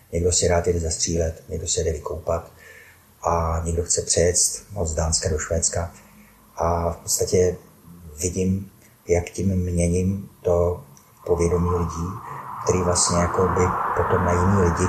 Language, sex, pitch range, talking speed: Czech, male, 85-90 Hz, 140 wpm